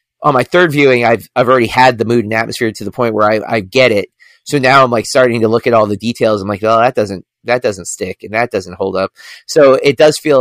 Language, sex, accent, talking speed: English, male, American, 275 wpm